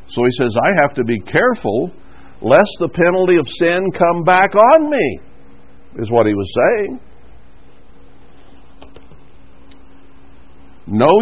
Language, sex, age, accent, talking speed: English, male, 60-79, American, 125 wpm